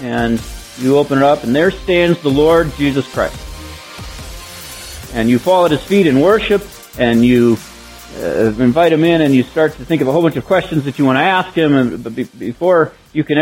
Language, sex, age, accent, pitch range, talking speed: English, male, 40-59, American, 125-180 Hz, 210 wpm